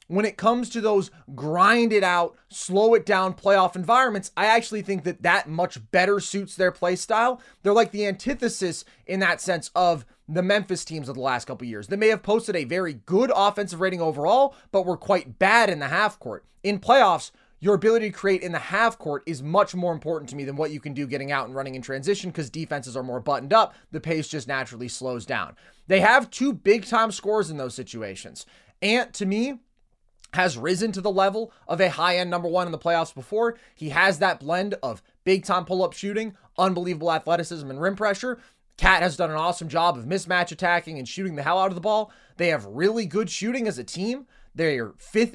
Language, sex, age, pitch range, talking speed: English, male, 20-39, 155-205 Hz, 210 wpm